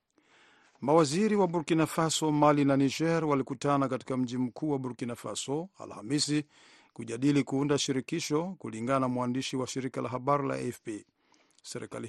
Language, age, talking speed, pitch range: Swahili, 50-69, 140 wpm, 125-150 Hz